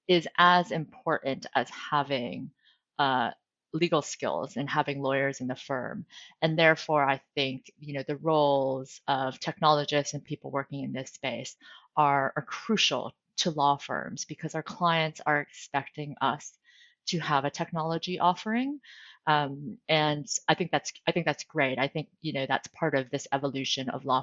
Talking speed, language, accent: 165 wpm, English, American